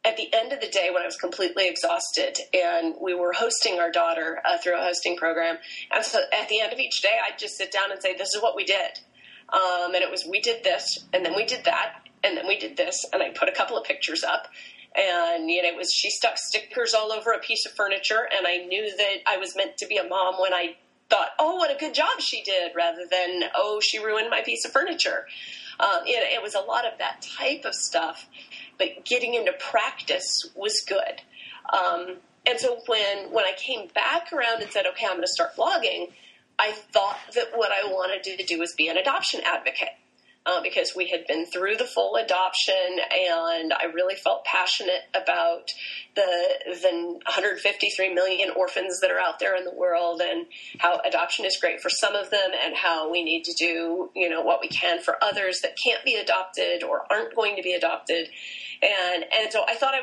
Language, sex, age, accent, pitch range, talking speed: English, female, 30-49, American, 175-240 Hz, 220 wpm